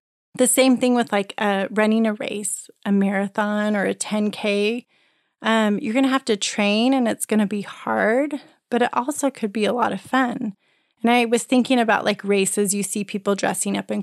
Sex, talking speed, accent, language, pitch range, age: female, 210 wpm, American, English, 205-255 Hz, 30-49